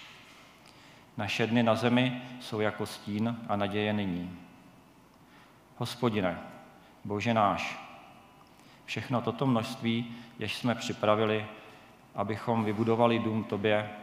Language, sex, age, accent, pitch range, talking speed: Czech, male, 40-59, native, 100-115 Hz, 100 wpm